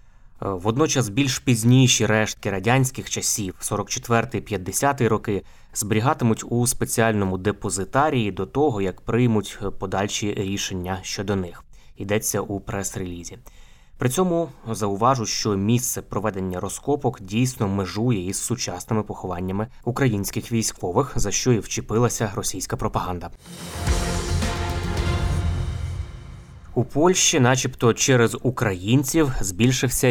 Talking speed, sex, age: 100 wpm, male, 20-39